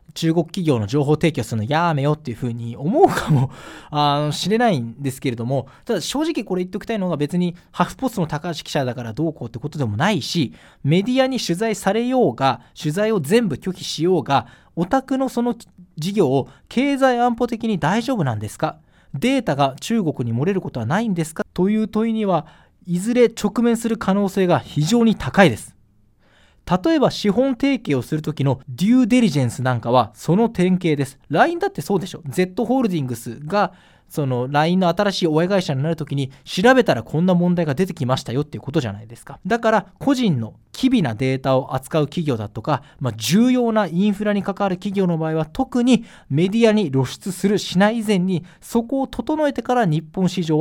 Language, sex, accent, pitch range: Japanese, male, native, 140-215 Hz